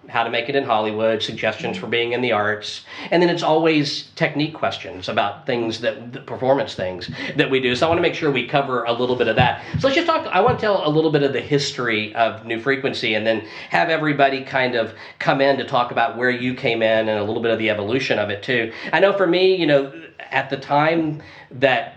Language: English